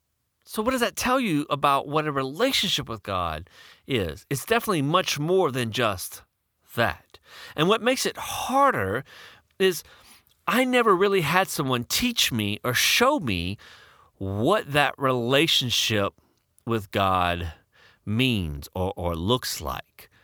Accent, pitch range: American, 95-150 Hz